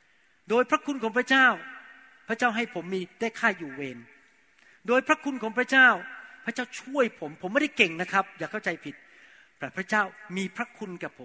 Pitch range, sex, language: 195-260 Hz, male, Thai